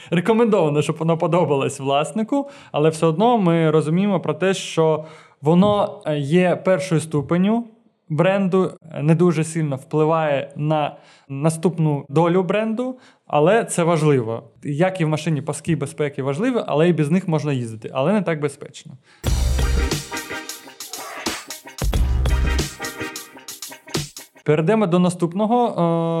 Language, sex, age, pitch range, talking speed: Ukrainian, male, 20-39, 150-185 Hz, 110 wpm